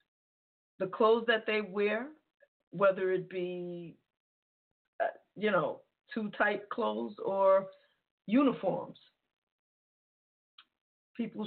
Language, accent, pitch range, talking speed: English, American, 175-220 Hz, 80 wpm